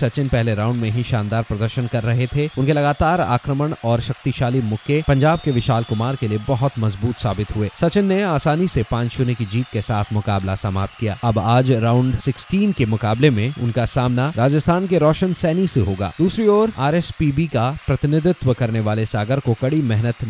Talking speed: 190 wpm